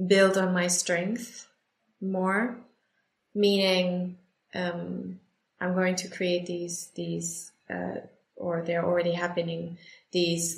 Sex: female